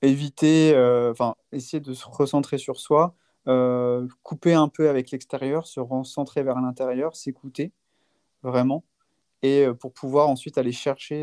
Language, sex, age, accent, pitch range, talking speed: French, male, 30-49, French, 130-150 Hz, 150 wpm